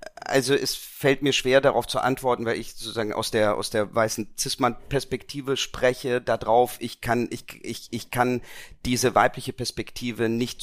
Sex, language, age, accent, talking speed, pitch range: male, German, 40-59, German, 165 wpm, 105-125 Hz